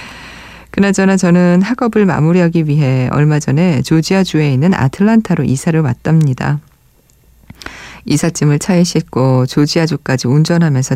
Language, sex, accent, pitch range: Korean, female, native, 135-175 Hz